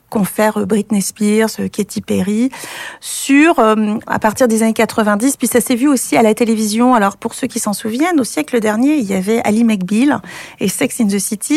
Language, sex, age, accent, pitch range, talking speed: French, female, 40-59, French, 215-270 Hz, 205 wpm